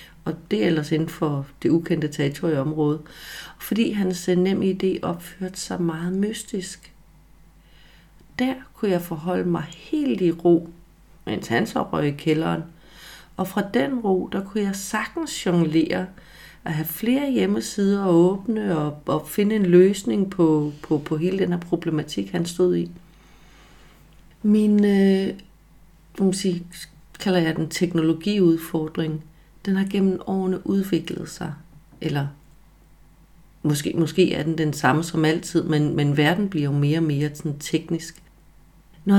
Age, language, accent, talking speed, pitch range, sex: 40-59, Danish, native, 140 wpm, 165-200 Hz, female